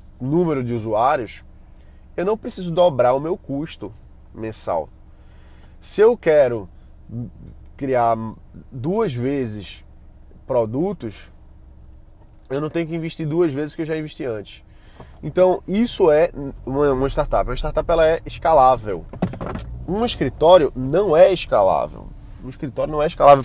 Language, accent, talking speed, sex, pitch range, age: Portuguese, Brazilian, 130 wpm, male, 115-160 Hz, 20-39